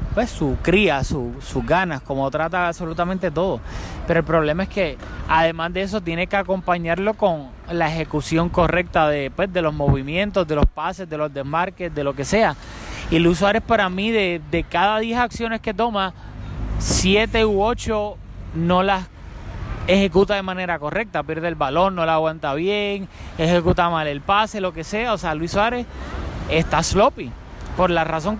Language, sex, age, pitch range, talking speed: Spanish, male, 20-39, 160-210 Hz, 175 wpm